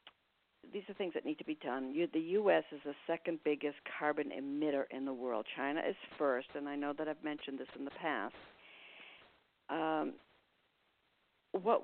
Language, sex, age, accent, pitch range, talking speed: English, female, 60-79, American, 140-170 Hz, 170 wpm